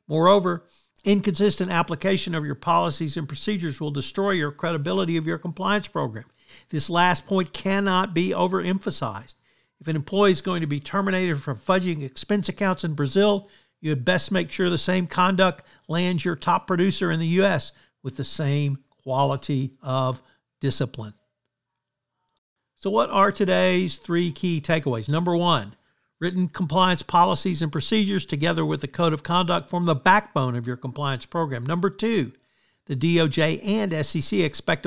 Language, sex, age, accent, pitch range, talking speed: English, male, 50-69, American, 145-185 Hz, 155 wpm